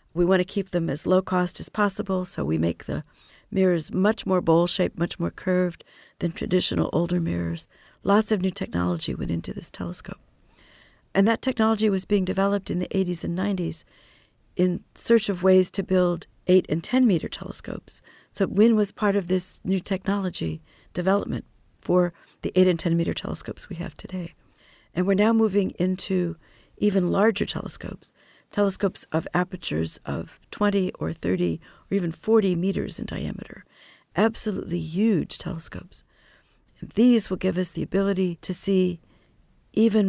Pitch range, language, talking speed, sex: 170-200 Hz, English, 160 wpm, female